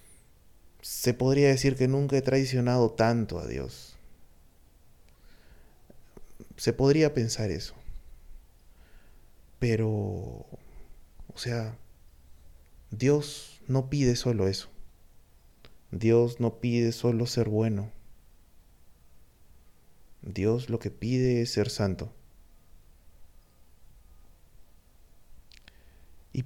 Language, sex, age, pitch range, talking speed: Spanish, male, 30-49, 75-120 Hz, 80 wpm